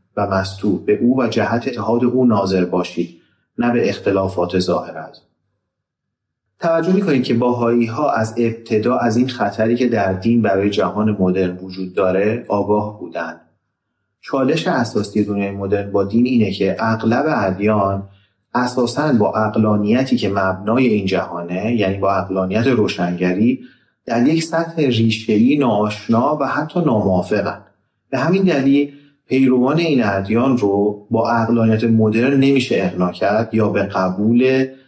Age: 30-49